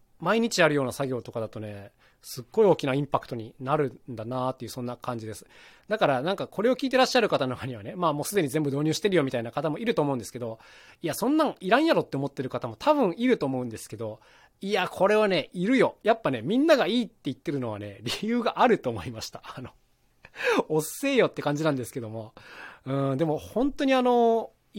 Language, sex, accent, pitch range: Japanese, male, native, 125-205 Hz